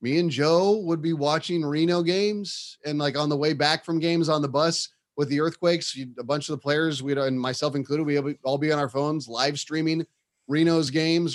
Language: English